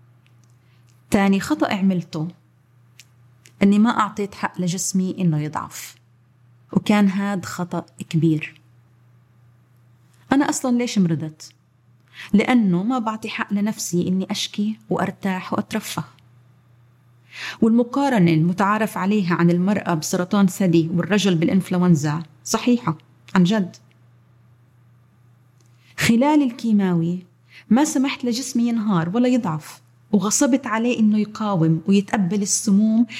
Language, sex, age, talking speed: Arabic, female, 30-49, 95 wpm